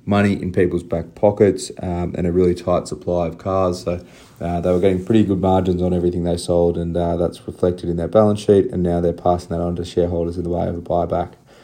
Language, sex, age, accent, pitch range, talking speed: English, male, 30-49, Australian, 90-100 Hz, 240 wpm